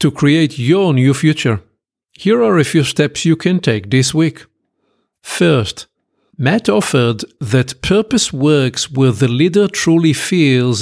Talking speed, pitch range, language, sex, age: 145 wpm, 125-160 Hz, English, male, 50-69